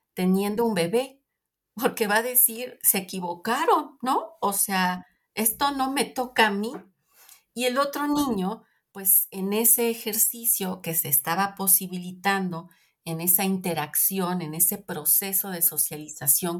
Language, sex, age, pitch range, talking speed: Spanish, female, 40-59, 165-200 Hz, 135 wpm